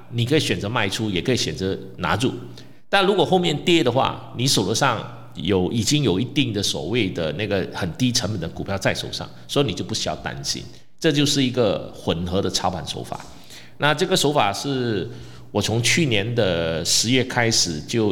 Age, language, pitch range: 50-69, Chinese, 95-135 Hz